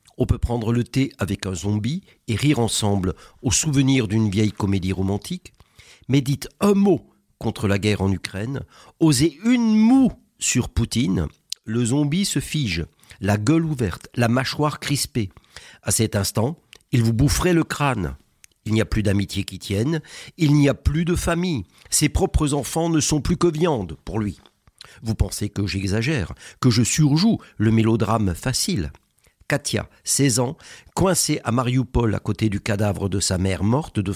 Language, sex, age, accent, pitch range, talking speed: French, male, 50-69, French, 105-150 Hz, 170 wpm